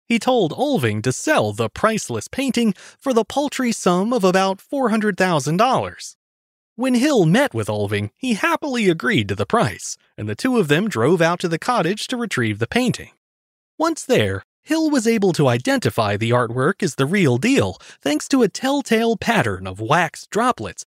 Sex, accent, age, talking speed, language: male, American, 30-49, 175 wpm, English